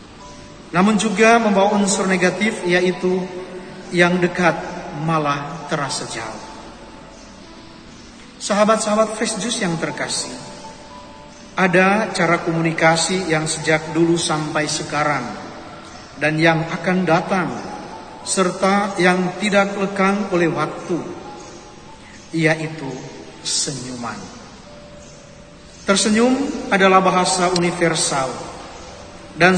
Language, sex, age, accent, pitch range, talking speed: Indonesian, male, 40-59, native, 160-200 Hz, 80 wpm